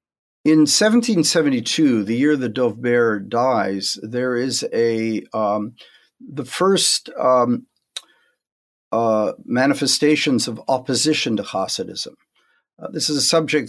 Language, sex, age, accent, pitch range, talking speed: English, male, 50-69, American, 110-150 Hz, 110 wpm